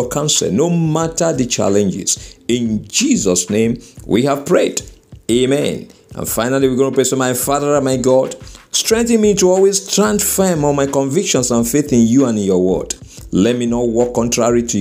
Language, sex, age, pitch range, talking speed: English, male, 50-69, 110-150 Hz, 190 wpm